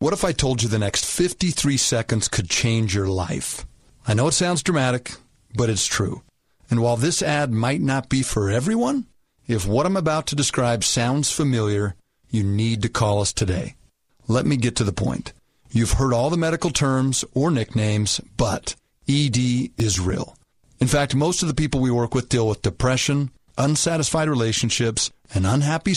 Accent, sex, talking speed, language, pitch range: American, male, 180 wpm, English, 110-145 Hz